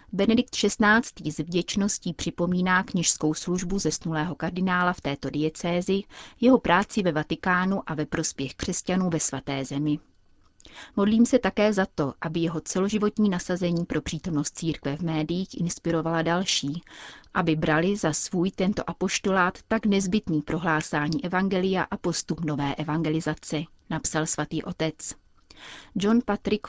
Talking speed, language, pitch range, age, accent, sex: 130 wpm, Czech, 155-190 Hz, 30-49, native, female